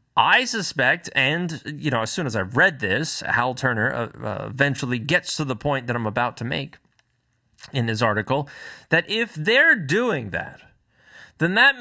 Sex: male